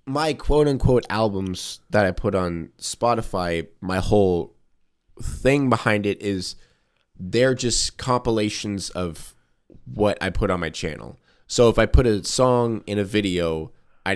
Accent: American